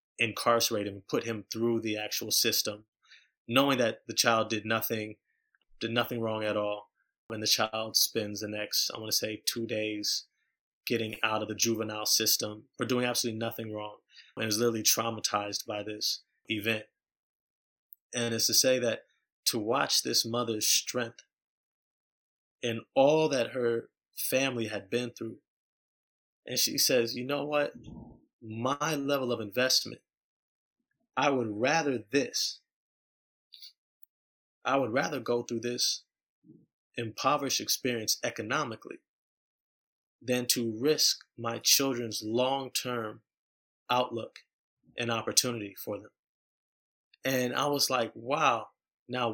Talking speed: 130 wpm